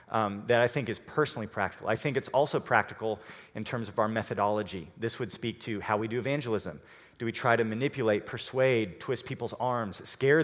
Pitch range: 100-125 Hz